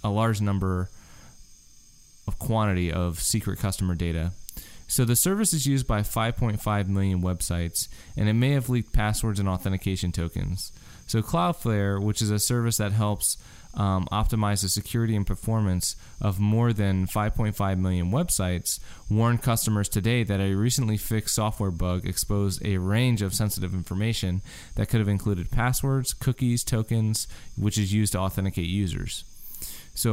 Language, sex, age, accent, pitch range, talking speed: English, male, 20-39, American, 95-115 Hz, 150 wpm